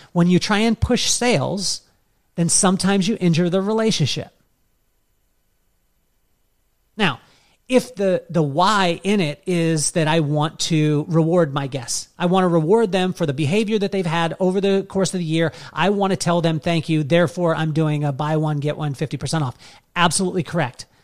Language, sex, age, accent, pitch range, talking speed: English, male, 40-59, American, 145-185 Hz, 180 wpm